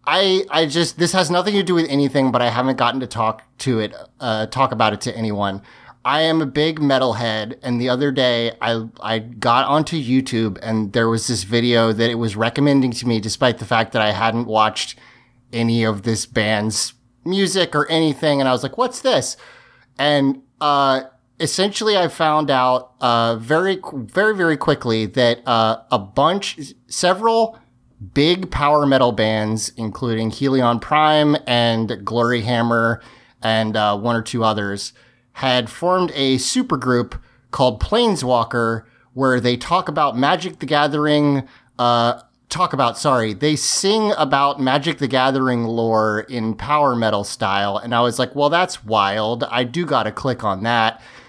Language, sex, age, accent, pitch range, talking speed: English, male, 30-49, American, 115-145 Hz, 170 wpm